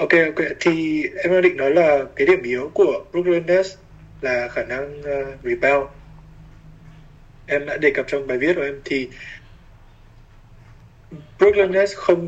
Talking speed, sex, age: 155 wpm, male, 20-39